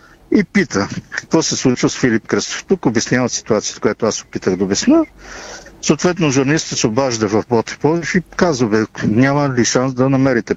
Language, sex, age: Bulgarian, male, 50-69